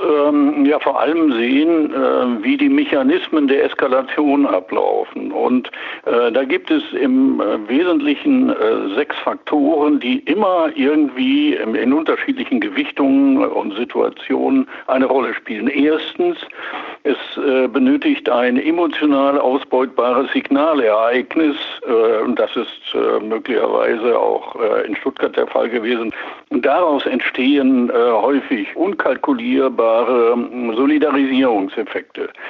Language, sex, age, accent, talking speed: German, male, 60-79, German, 95 wpm